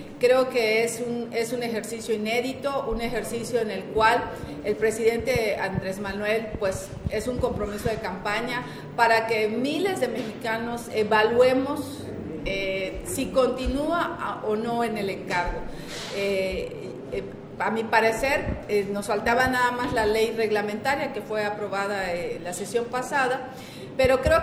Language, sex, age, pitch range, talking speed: Spanish, female, 40-59, 215-255 Hz, 145 wpm